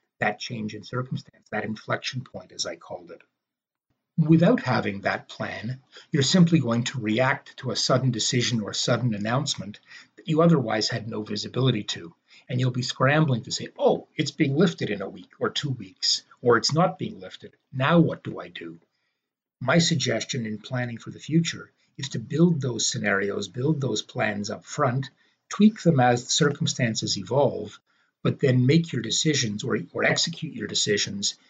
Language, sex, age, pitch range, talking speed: English, male, 50-69, 110-155 Hz, 180 wpm